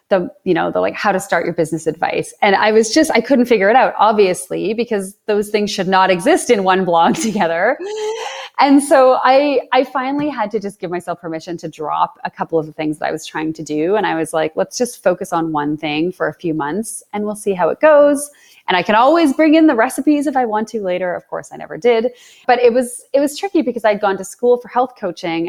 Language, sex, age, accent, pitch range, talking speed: English, female, 30-49, American, 165-245 Hz, 250 wpm